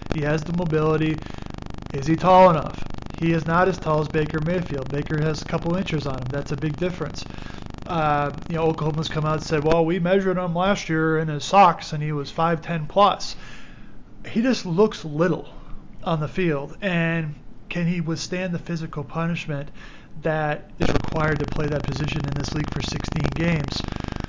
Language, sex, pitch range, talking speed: English, male, 145-175 Hz, 190 wpm